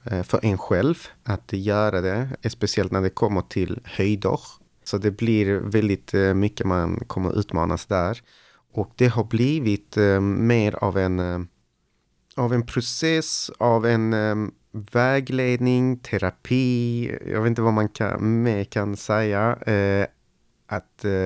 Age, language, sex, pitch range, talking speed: 30-49, Swedish, male, 100-120 Hz, 120 wpm